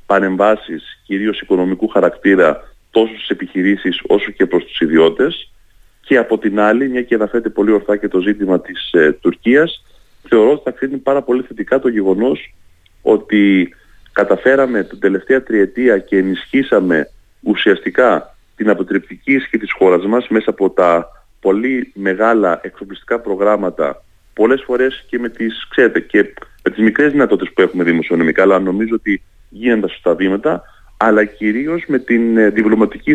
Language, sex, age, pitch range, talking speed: Greek, male, 30-49, 100-125 Hz, 140 wpm